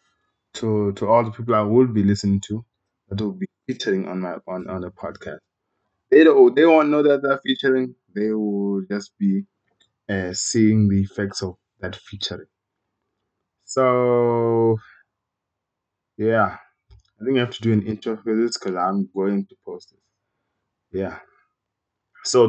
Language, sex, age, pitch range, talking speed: English, male, 20-39, 100-120 Hz, 160 wpm